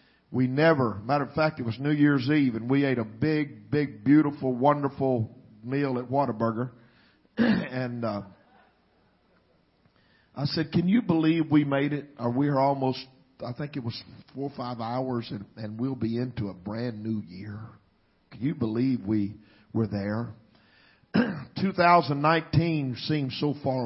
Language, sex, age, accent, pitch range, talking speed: English, male, 50-69, American, 125-170 Hz, 155 wpm